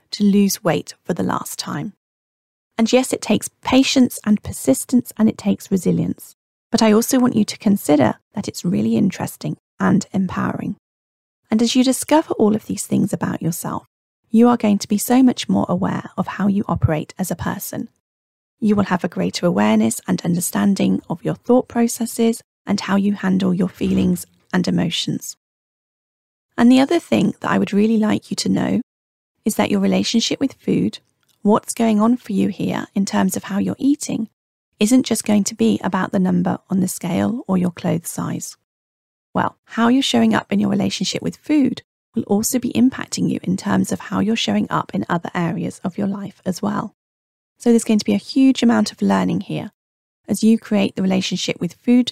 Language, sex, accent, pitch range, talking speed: English, female, British, 185-230 Hz, 195 wpm